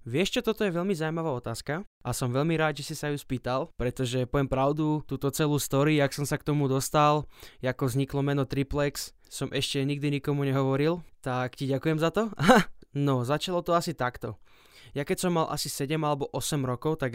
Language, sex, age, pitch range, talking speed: Slovak, male, 20-39, 135-155 Hz, 200 wpm